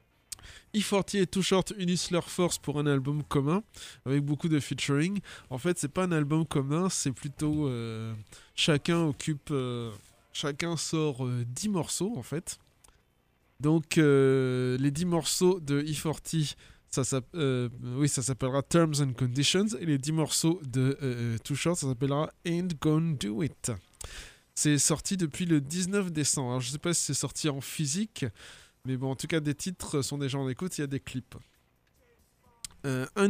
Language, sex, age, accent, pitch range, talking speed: French, male, 20-39, French, 130-165 Hz, 175 wpm